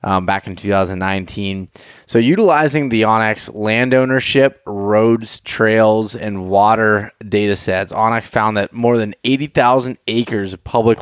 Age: 20-39